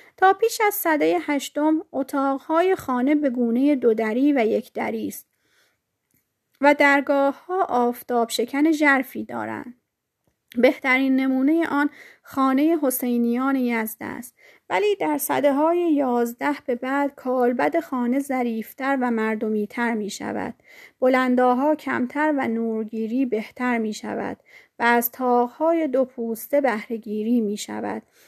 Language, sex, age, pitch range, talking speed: Persian, female, 30-49, 230-295 Hz, 120 wpm